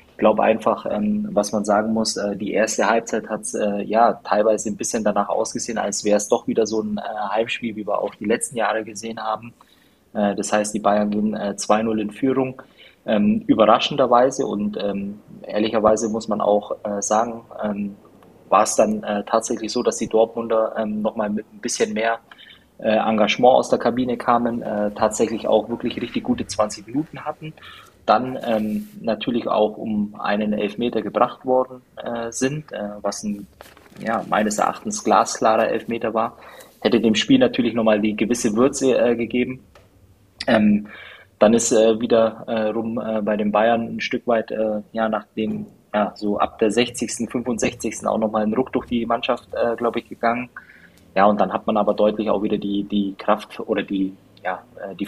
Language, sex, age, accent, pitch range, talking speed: German, male, 20-39, German, 105-115 Hz, 180 wpm